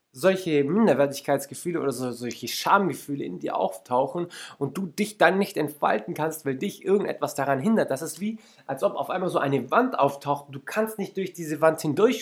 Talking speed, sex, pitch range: 185 wpm, male, 140-190 Hz